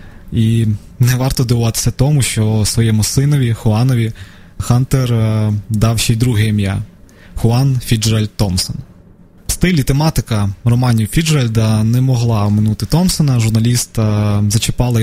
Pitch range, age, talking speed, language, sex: 105-125 Hz, 20-39, 120 wpm, Ukrainian, male